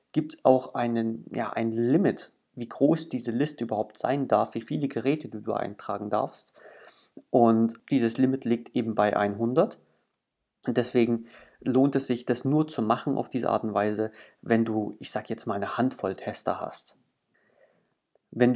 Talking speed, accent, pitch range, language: 165 wpm, German, 110-130 Hz, German